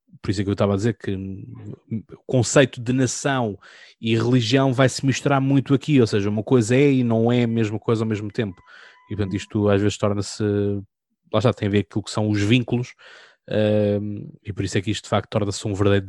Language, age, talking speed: Portuguese, 20-39, 230 wpm